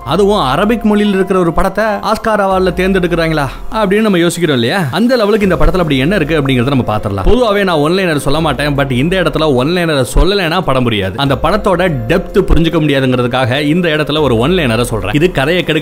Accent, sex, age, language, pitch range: native, male, 30-49, Tamil, 140-190 Hz